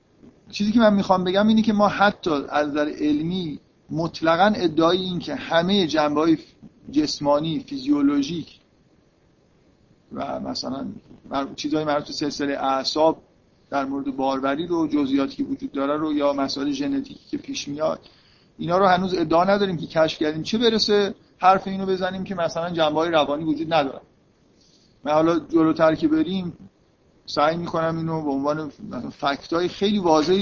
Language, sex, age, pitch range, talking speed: Persian, male, 50-69, 145-190 Hz, 155 wpm